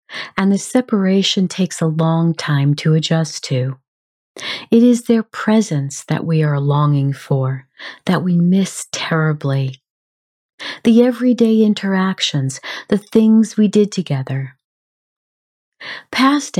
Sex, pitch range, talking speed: female, 145-205 Hz, 115 wpm